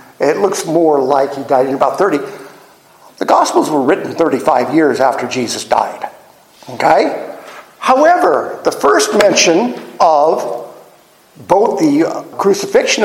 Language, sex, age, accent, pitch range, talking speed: English, male, 50-69, American, 155-230 Hz, 125 wpm